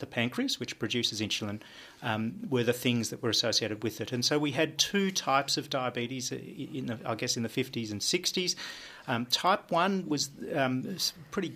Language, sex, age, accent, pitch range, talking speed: English, male, 40-59, Australian, 115-150 Hz, 190 wpm